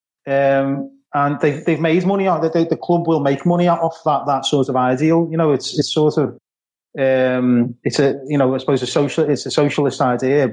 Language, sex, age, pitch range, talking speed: Persian, male, 30-49, 140-165 Hz, 215 wpm